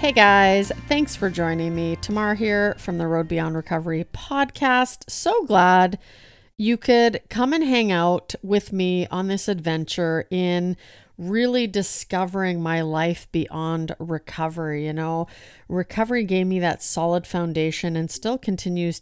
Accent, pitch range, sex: American, 165-195 Hz, female